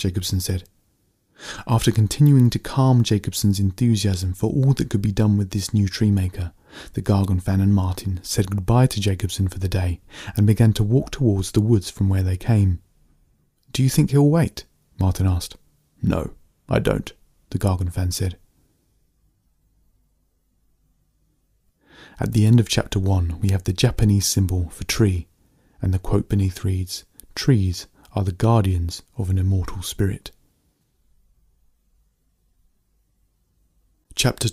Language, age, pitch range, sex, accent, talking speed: English, 30-49, 90-110 Hz, male, British, 145 wpm